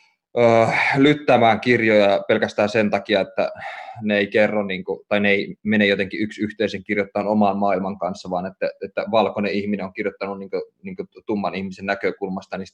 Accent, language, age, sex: native, Finnish, 20-39, male